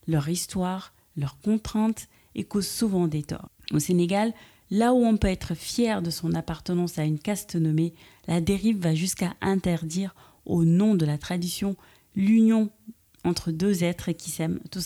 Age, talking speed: 30-49, 165 wpm